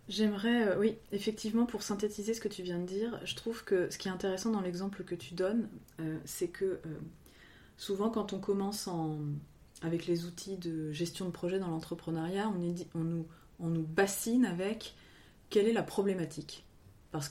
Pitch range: 170-215 Hz